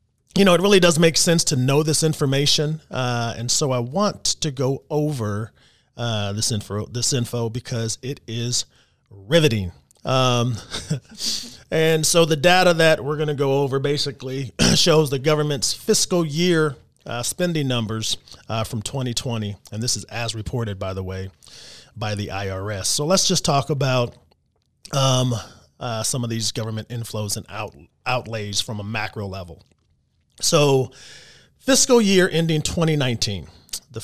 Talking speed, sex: 150 wpm, male